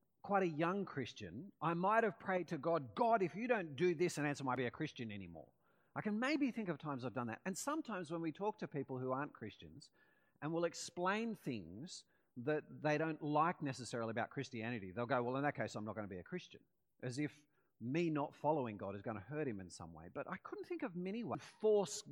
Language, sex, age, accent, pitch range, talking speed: English, male, 40-59, Australian, 125-195 Hz, 240 wpm